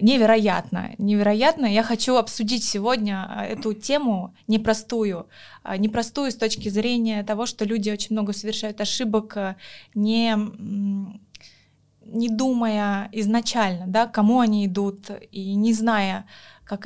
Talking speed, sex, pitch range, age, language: 115 wpm, female, 195-220 Hz, 20-39, Russian